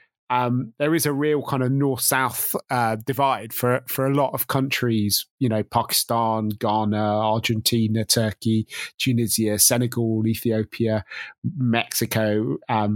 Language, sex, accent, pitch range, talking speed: English, male, British, 110-135 Hz, 125 wpm